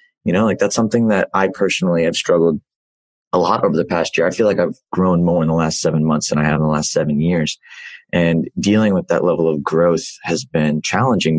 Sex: male